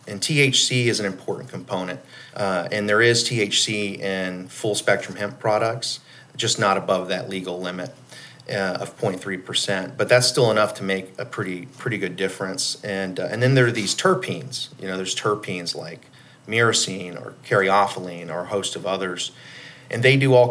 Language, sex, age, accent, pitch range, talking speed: English, male, 40-59, American, 95-125 Hz, 175 wpm